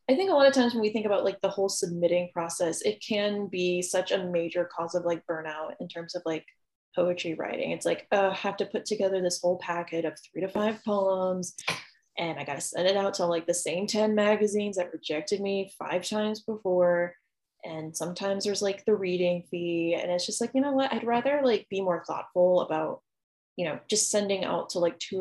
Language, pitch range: English, 170-200 Hz